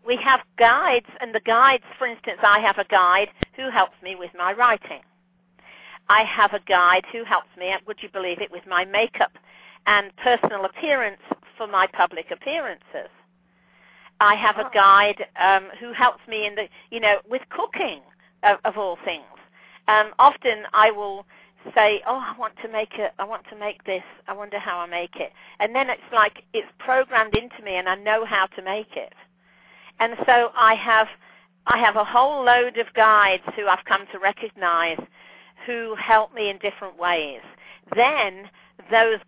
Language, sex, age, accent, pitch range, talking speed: English, female, 50-69, British, 185-225 Hz, 180 wpm